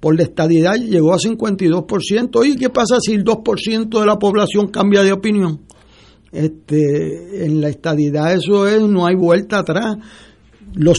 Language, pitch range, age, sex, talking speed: Spanish, 155-200 Hz, 60-79, male, 155 wpm